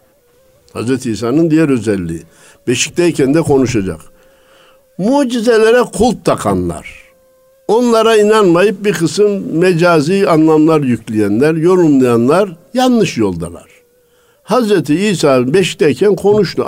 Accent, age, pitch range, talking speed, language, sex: native, 60-79, 140-220 Hz, 85 wpm, Turkish, male